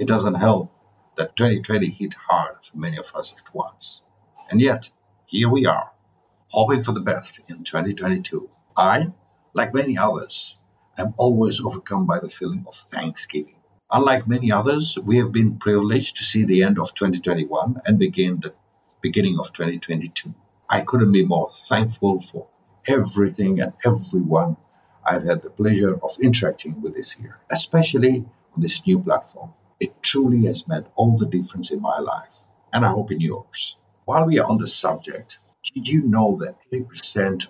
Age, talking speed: 60-79, 170 wpm